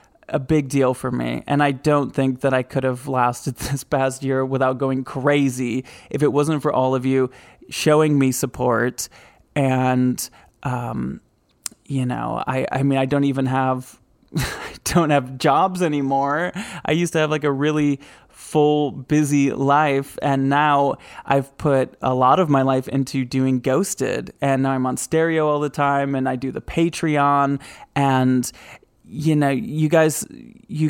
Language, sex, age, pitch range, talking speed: English, male, 20-39, 130-155 Hz, 170 wpm